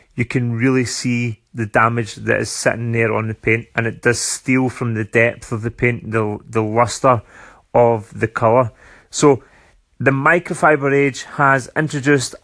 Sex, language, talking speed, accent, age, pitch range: male, English, 170 wpm, British, 30-49, 120-145 Hz